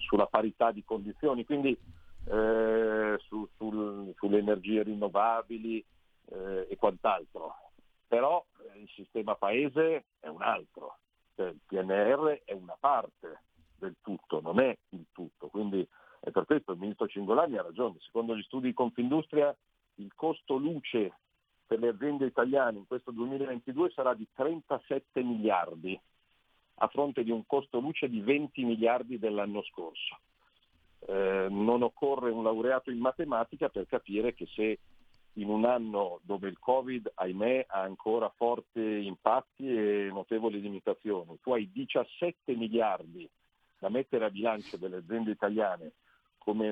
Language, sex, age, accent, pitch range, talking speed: Italian, male, 50-69, native, 100-130 Hz, 140 wpm